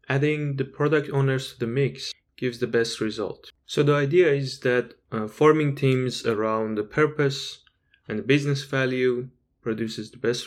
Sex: male